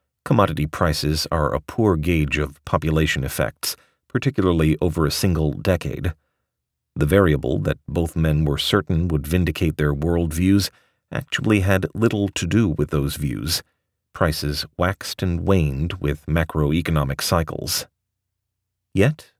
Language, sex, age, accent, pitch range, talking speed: English, male, 40-59, American, 75-100 Hz, 125 wpm